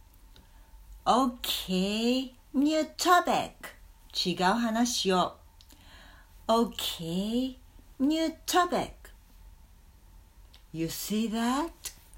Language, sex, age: English, female, 60-79